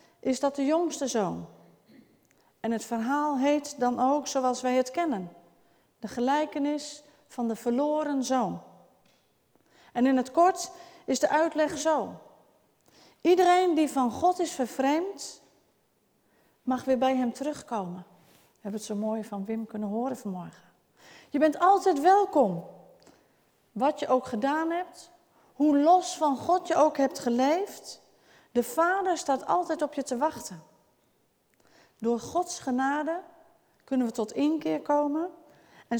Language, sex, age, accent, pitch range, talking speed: Dutch, female, 40-59, Dutch, 245-320 Hz, 140 wpm